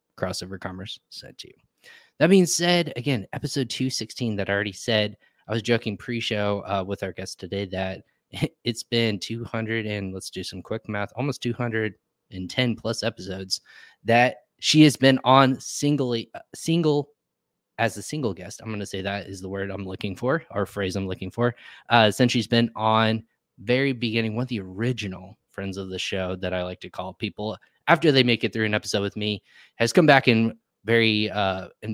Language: English